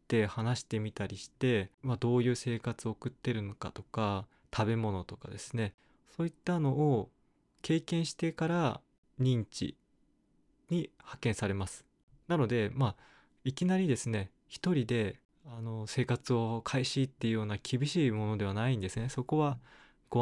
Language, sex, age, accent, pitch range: Japanese, male, 20-39, native, 110-140 Hz